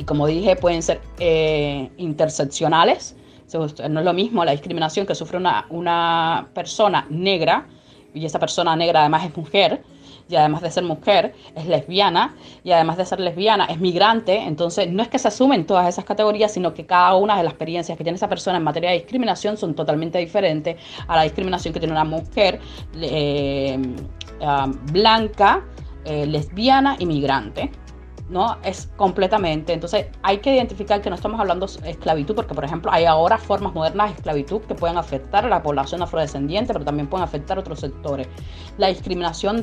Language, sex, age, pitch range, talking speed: Spanish, female, 20-39, 155-195 Hz, 175 wpm